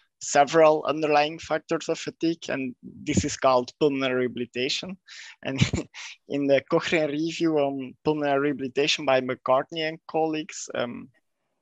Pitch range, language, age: 130-150 Hz, English, 20-39